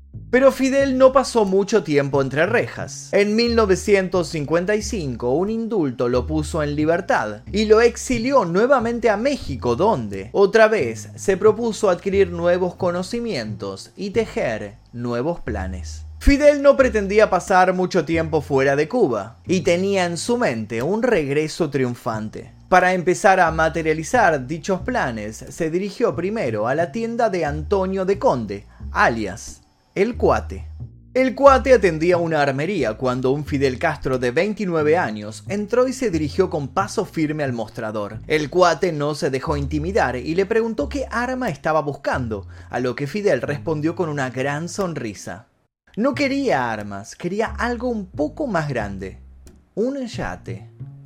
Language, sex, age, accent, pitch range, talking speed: Spanish, male, 20-39, Argentinian, 125-210 Hz, 145 wpm